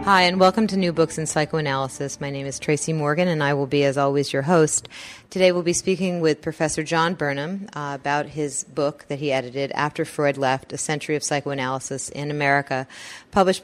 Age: 30-49